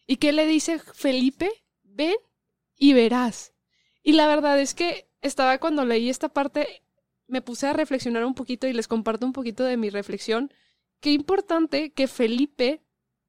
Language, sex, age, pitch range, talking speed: Spanish, female, 20-39, 235-280 Hz, 165 wpm